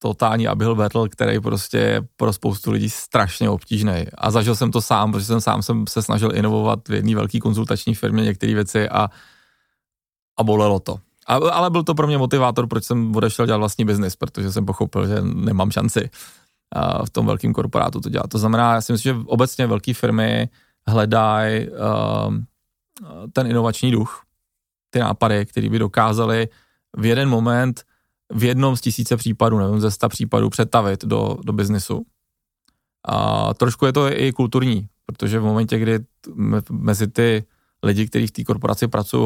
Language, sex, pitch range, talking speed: Czech, male, 105-120 Hz, 170 wpm